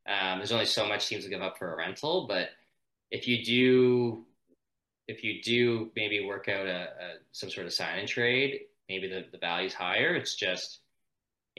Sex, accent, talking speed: male, American, 195 wpm